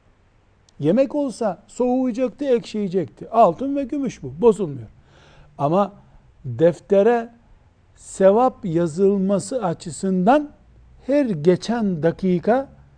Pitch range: 150-220 Hz